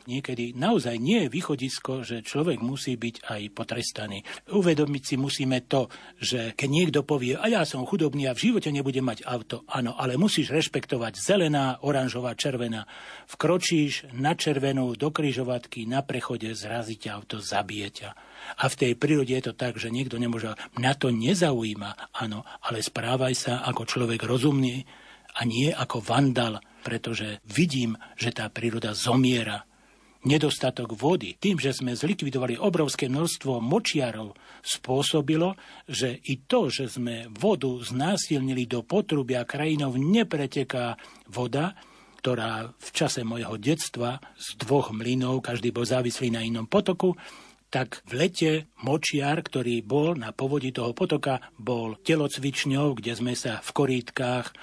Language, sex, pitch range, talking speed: Slovak, male, 120-150 Hz, 140 wpm